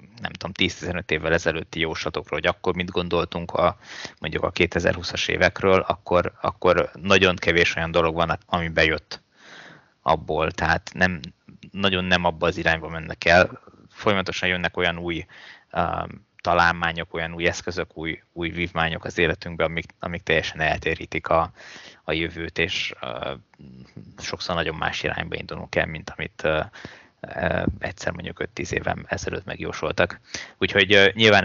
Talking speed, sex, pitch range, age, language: 140 wpm, male, 85-95 Hz, 20-39, Hungarian